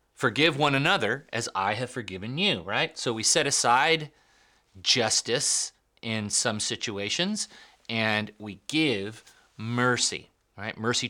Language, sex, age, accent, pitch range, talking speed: English, male, 30-49, American, 105-160 Hz, 125 wpm